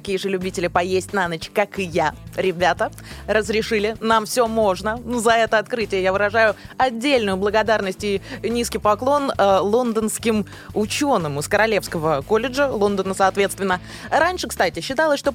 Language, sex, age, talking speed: Russian, female, 20-39, 140 wpm